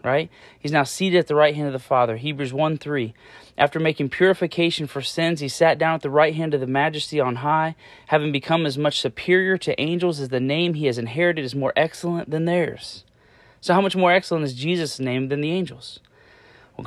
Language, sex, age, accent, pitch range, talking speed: English, male, 30-49, American, 130-160 Hz, 215 wpm